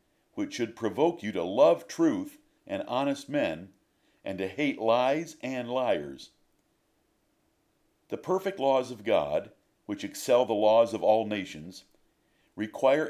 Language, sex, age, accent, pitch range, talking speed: English, male, 50-69, American, 105-140 Hz, 135 wpm